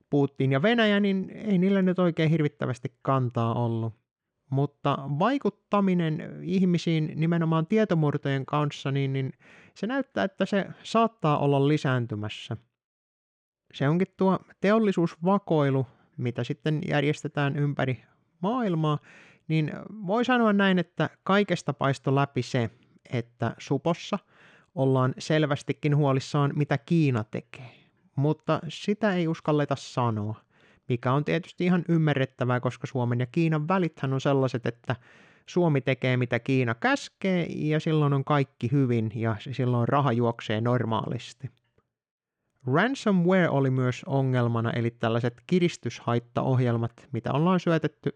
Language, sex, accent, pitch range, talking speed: Finnish, male, native, 125-170 Hz, 115 wpm